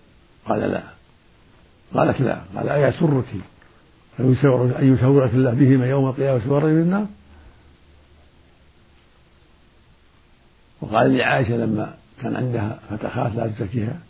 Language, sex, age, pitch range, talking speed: Arabic, male, 60-79, 95-130 Hz, 100 wpm